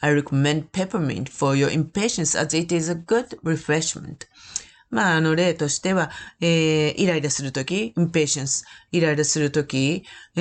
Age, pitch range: 40-59, 140-185 Hz